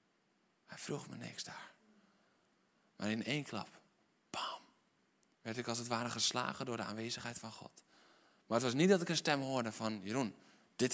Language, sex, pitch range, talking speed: Dutch, male, 120-170 Hz, 180 wpm